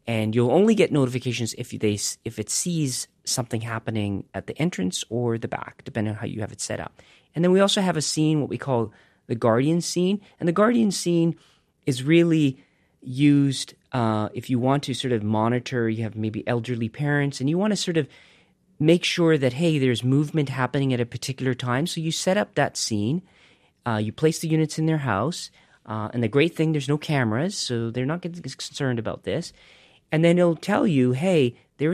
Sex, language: male, English